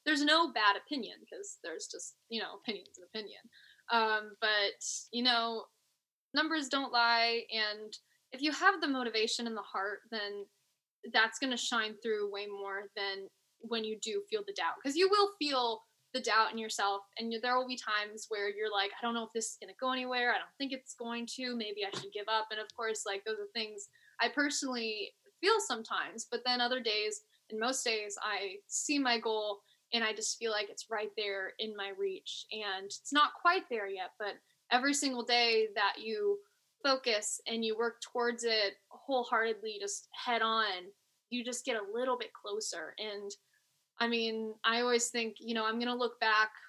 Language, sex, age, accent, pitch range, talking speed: English, female, 10-29, American, 210-255 Hz, 200 wpm